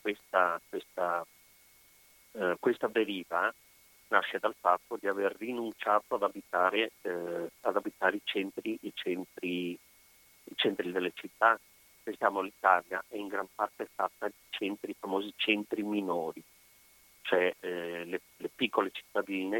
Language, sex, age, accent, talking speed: Italian, male, 40-59, native, 130 wpm